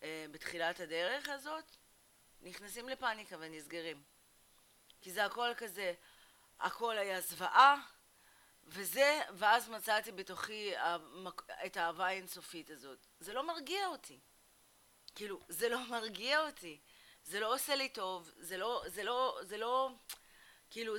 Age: 30-49